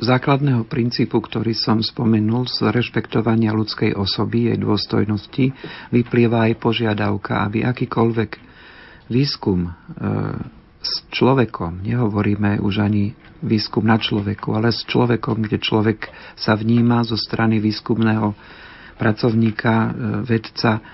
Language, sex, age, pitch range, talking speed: Slovak, male, 50-69, 110-125 Hz, 110 wpm